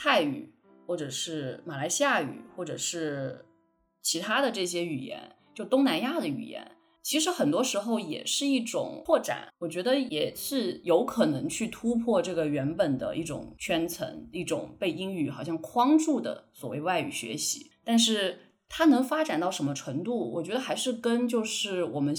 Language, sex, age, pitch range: Chinese, female, 20-39, 165-255 Hz